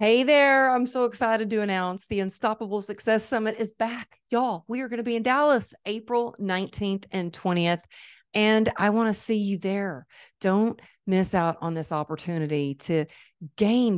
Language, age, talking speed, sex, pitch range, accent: English, 50-69, 165 wpm, female, 165-210 Hz, American